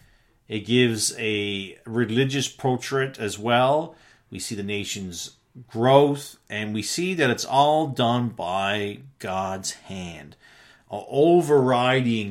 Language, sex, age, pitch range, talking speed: English, male, 40-59, 105-130 Hz, 115 wpm